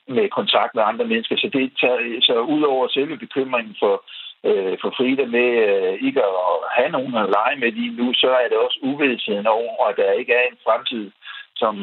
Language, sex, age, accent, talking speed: Danish, male, 60-79, native, 215 wpm